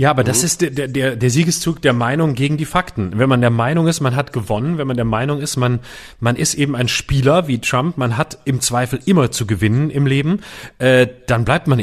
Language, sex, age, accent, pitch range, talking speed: German, male, 30-49, German, 120-160 Hz, 240 wpm